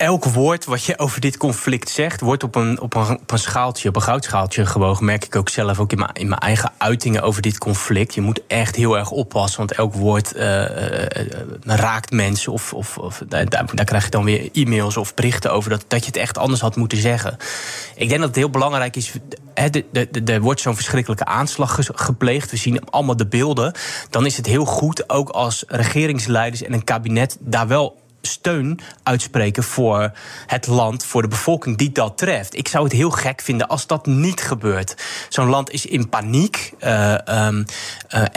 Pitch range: 110-140 Hz